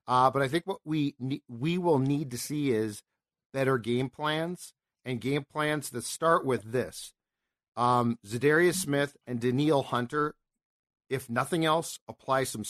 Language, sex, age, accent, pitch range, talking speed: English, male, 50-69, American, 125-155 Hz, 160 wpm